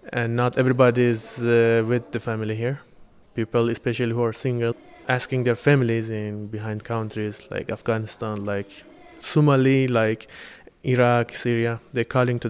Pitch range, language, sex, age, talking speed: 110-120 Hz, German, male, 20-39, 140 wpm